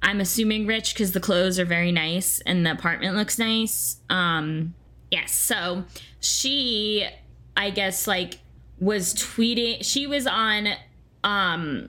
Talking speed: 135 wpm